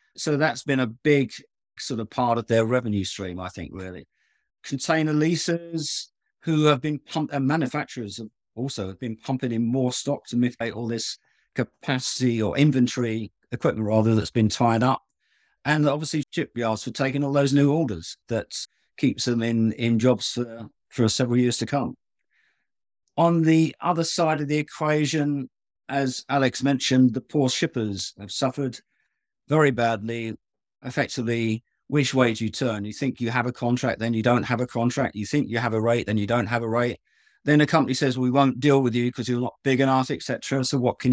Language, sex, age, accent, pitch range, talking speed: English, male, 50-69, British, 115-145 Hz, 190 wpm